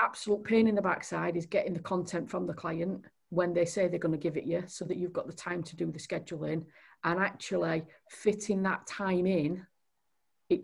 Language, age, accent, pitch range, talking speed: English, 40-59, British, 160-185 Hz, 215 wpm